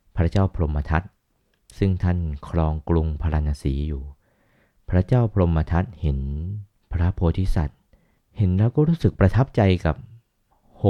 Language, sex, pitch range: Thai, male, 80-105 Hz